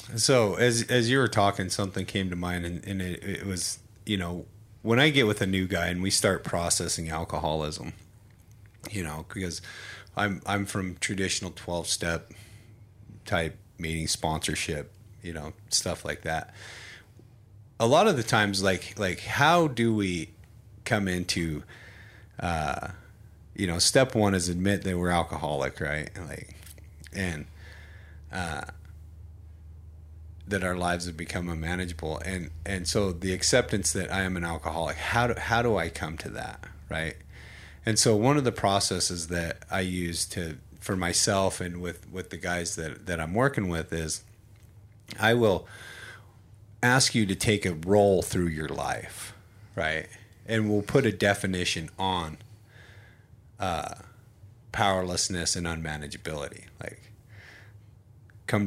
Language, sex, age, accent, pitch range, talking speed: English, male, 30-49, American, 85-110 Hz, 150 wpm